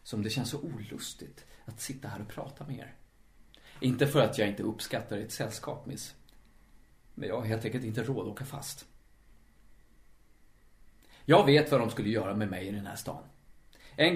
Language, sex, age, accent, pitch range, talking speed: Swedish, male, 30-49, native, 115-140 Hz, 185 wpm